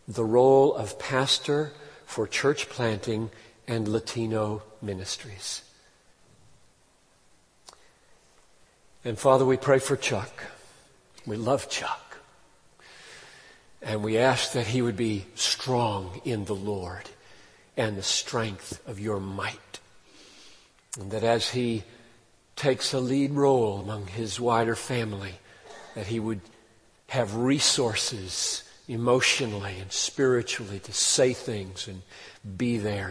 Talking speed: 110 wpm